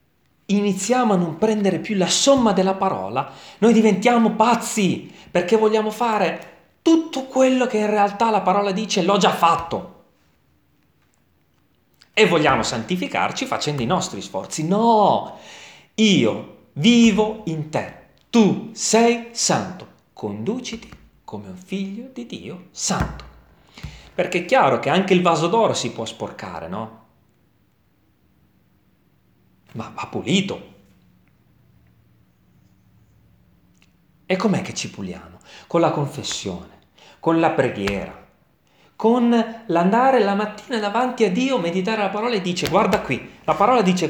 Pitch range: 160-225 Hz